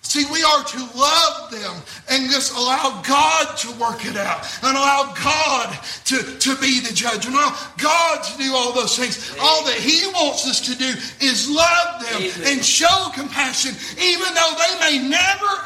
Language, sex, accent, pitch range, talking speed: English, male, American, 195-285 Hz, 185 wpm